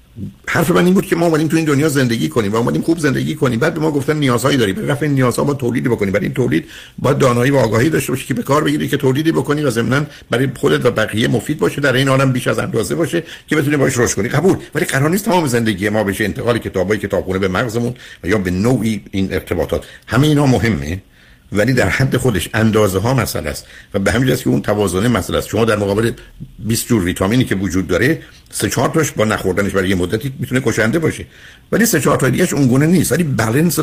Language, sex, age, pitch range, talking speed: Persian, male, 60-79, 100-135 Hz, 230 wpm